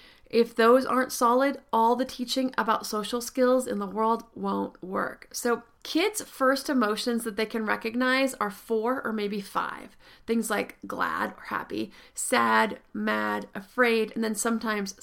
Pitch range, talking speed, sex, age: 215-245 Hz, 155 wpm, female, 30-49